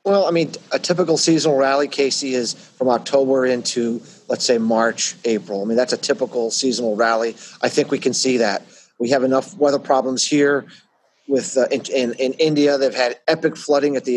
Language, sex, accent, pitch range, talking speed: English, male, American, 130-160 Hz, 200 wpm